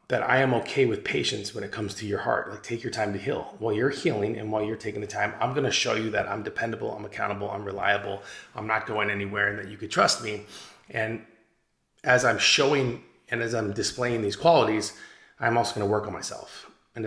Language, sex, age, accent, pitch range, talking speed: English, male, 30-49, American, 105-155 Hz, 235 wpm